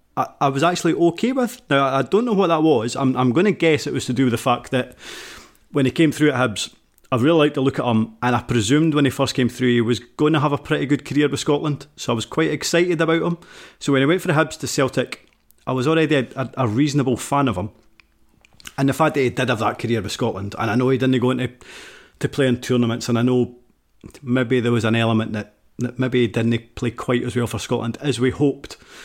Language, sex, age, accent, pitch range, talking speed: English, male, 30-49, British, 125-165 Hz, 265 wpm